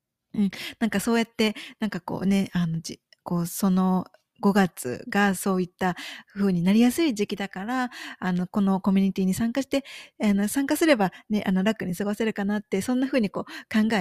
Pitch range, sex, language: 180-230 Hz, female, Japanese